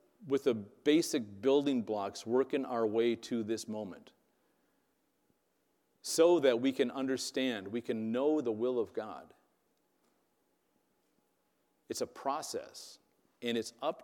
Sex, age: male, 40-59